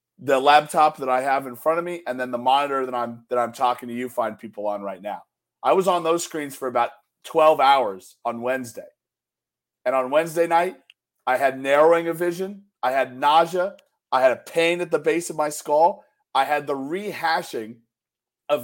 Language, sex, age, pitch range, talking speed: English, male, 40-59, 150-220 Hz, 205 wpm